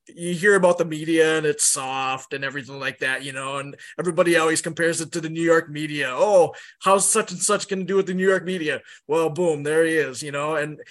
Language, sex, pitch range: English, male, 150-185 Hz